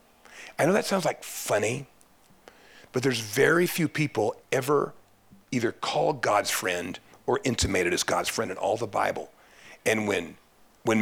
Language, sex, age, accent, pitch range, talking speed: English, male, 40-59, American, 120-150 Hz, 150 wpm